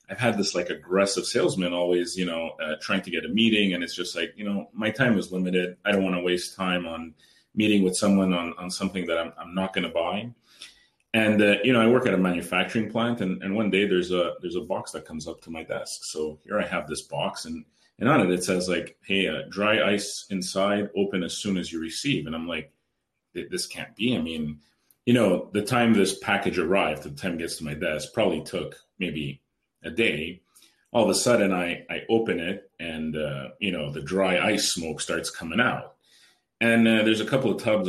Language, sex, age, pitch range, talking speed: English, male, 30-49, 90-105 Hz, 235 wpm